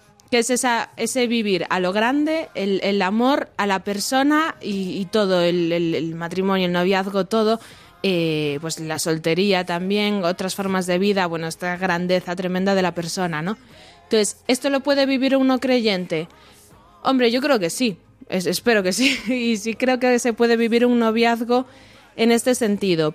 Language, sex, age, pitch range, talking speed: Spanish, female, 20-39, 190-260 Hz, 175 wpm